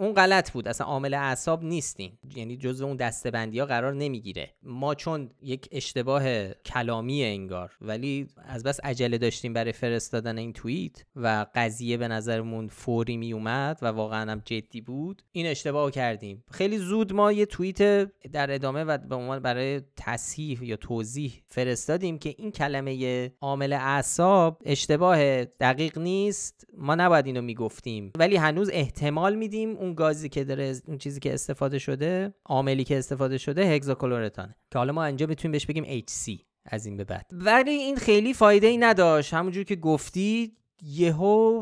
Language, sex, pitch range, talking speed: Persian, male, 120-165 Hz, 160 wpm